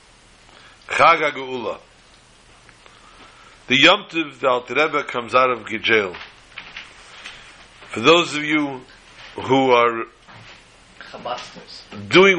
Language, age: English, 60-79